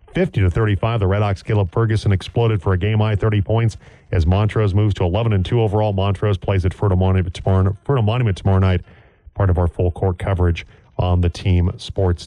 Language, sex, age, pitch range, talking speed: English, male, 40-59, 95-115 Hz, 195 wpm